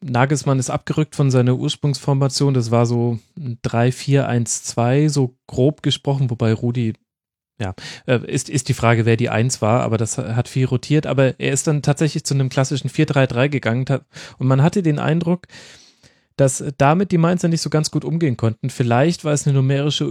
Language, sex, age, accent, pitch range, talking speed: German, male, 30-49, German, 120-145 Hz, 190 wpm